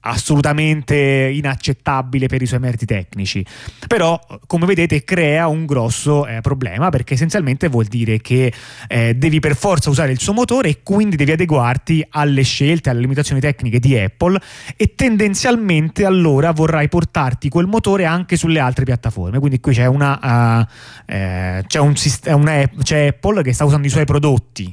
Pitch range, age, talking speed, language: 120-160 Hz, 30-49, 165 wpm, Italian